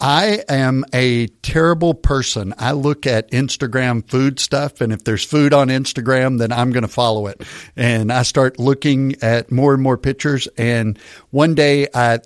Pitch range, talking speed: 120-140 Hz, 175 wpm